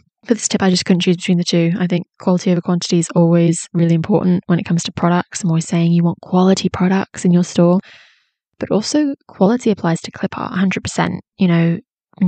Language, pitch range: English, 170-195 Hz